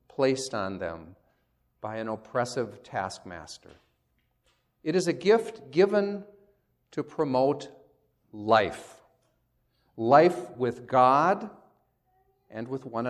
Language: English